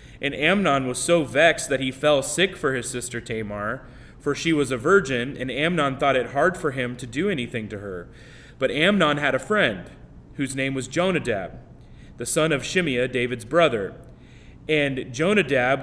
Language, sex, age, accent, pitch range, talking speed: English, male, 30-49, American, 125-155 Hz, 180 wpm